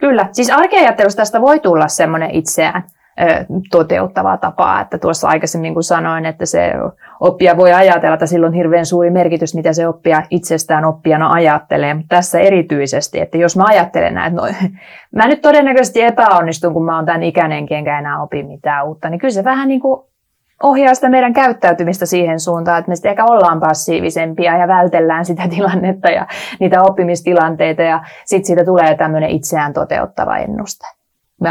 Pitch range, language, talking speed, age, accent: 165-200 Hz, Finnish, 170 wpm, 30-49, native